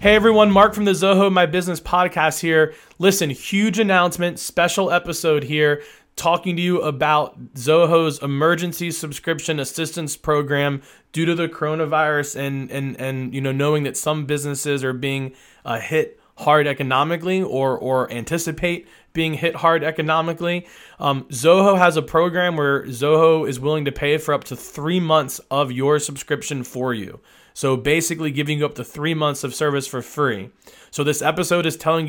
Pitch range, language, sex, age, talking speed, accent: 130-165 Hz, English, male, 20-39, 170 wpm, American